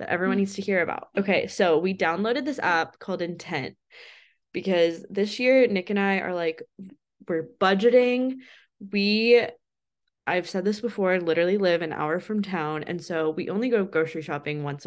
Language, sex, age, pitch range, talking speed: English, female, 20-39, 175-225 Hz, 175 wpm